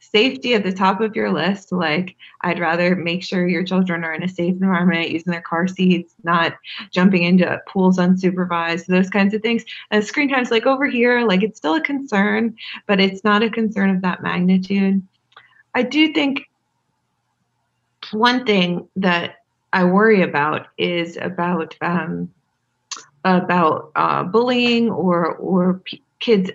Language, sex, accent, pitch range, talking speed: English, female, American, 165-205 Hz, 160 wpm